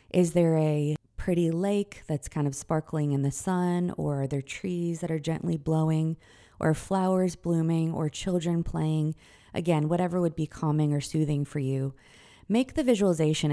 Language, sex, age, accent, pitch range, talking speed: English, female, 30-49, American, 145-175 Hz, 170 wpm